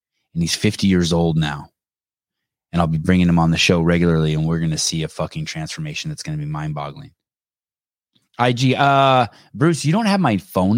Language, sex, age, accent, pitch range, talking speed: English, male, 30-49, American, 85-135 Hz, 205 wpm